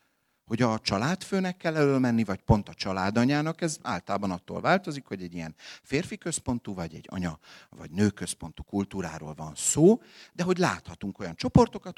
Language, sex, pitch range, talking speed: Hungarian, male, 85-145 Hz, 160 wpm